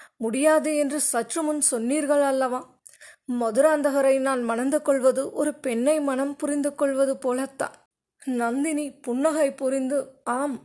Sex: female